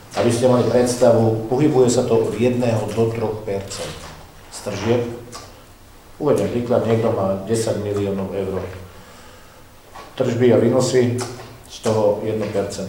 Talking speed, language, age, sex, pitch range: 120 wpm, Slovak, 50-69, male, 95-115 Hz